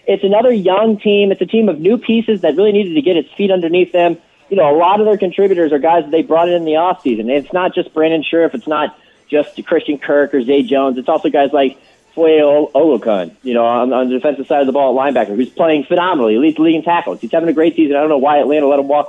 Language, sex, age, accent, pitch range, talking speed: English, male, 30-49, American, 135-180 Hz, 260 wpm